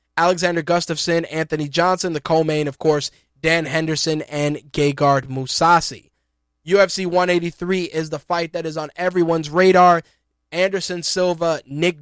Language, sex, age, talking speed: English, male, 20-39, 130 wpm